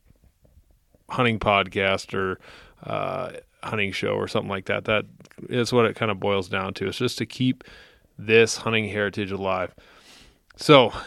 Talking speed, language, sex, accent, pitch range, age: 150 wpm, English, male, American, 105-120 Hz, 30-49